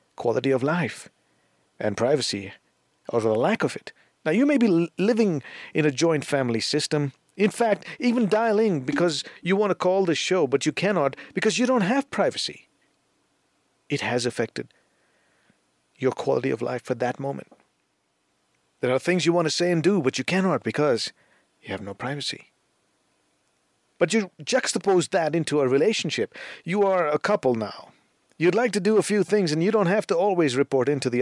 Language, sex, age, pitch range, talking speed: English, male, 50-69, 125-190 Hz, 180 wpm